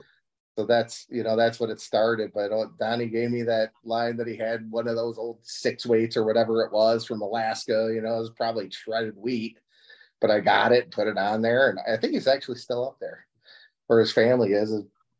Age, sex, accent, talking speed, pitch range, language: 30-49, male, American, 225 wpm, 105-115 Hz, English